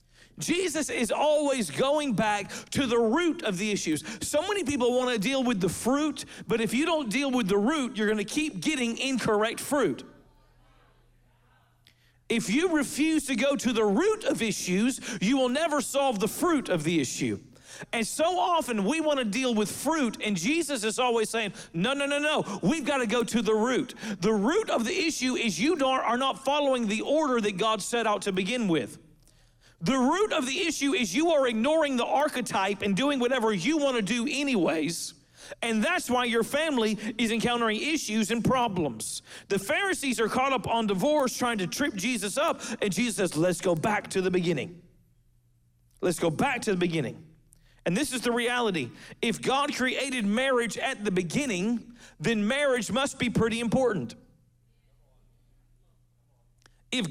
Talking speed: 180 wpm